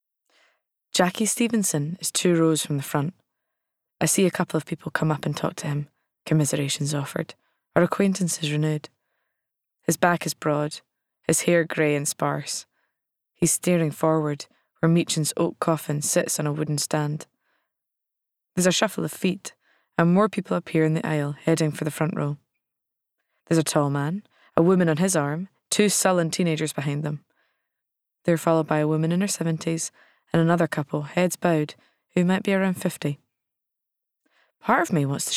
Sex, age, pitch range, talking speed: female, 20-39, 150-175 Hz, 170 wpm